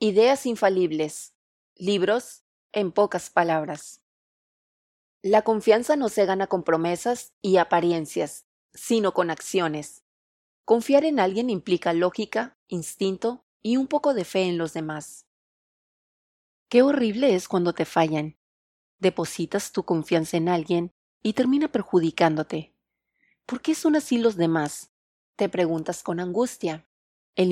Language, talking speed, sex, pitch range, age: Spanish, 125 wpm, female, 165-225 Hz, 30-49